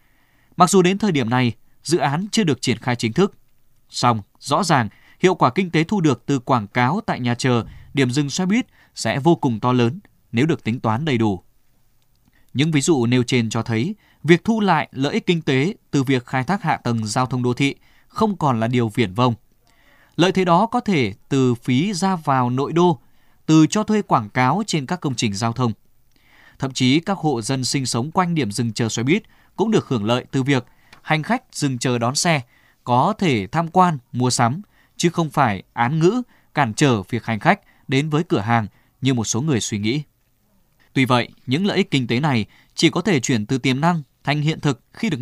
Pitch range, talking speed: 120-165 Hz, 220 wpm